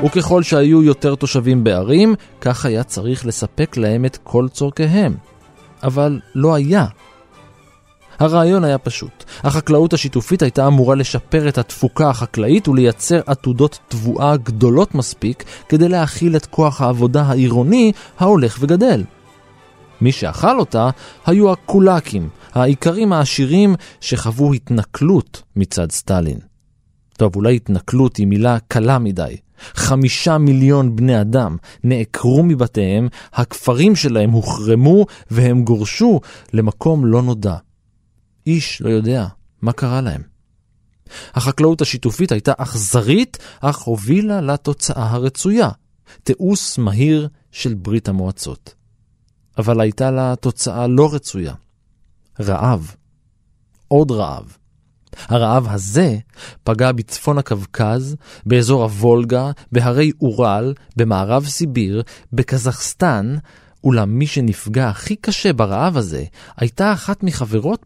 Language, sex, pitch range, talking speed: Hebrew, male, 110-150 Hz, 110 wpm